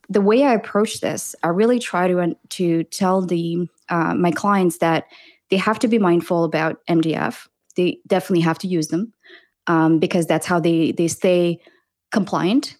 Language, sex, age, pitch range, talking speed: English, female, 20-39, 170-200 Hz, 175 wpm